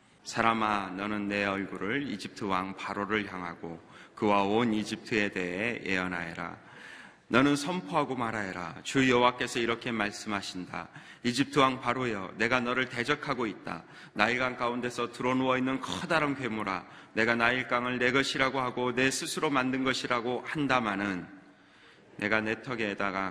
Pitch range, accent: 100-125 Hz, native